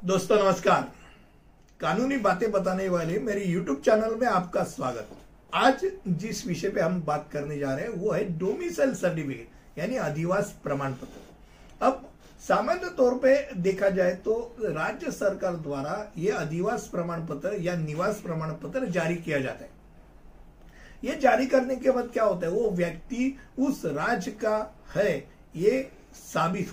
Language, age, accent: Hindi, 60-79, native